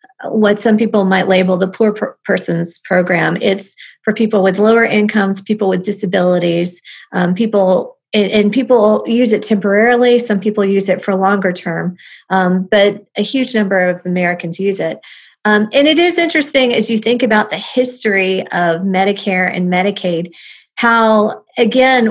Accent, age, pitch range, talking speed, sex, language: American, 40-59, 190-225 Hz, 165 wpm, female, English